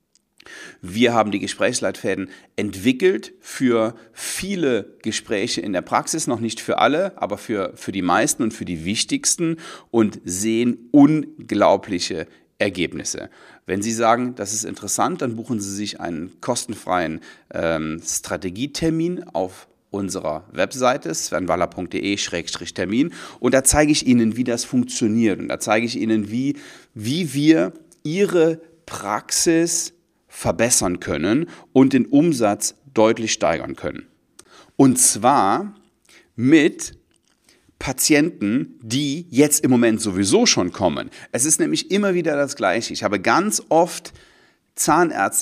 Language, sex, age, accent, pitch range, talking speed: German, male, 40-59, German, 115-160 Hz, 125 wpm